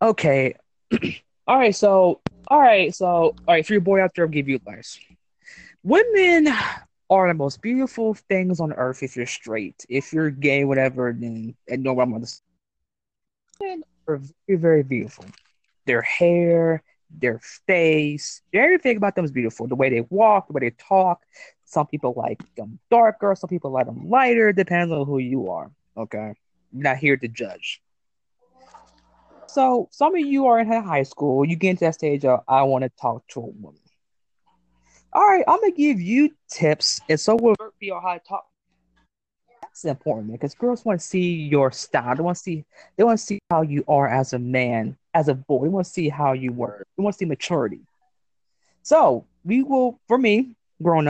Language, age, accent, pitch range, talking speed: English, 20-39, American, 135-215 Hz, 185 wpm